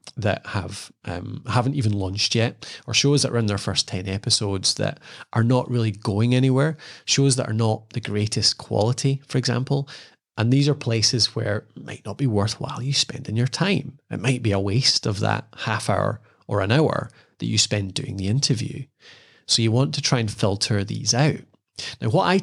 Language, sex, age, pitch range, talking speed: English, male, 20-39, 110-140 Hz, 200 wpm